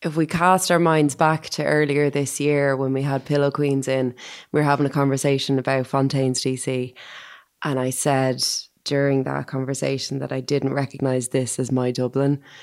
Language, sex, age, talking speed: English, female, 20-39, 180 wpm